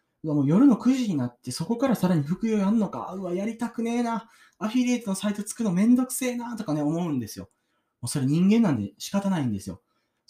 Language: Japanese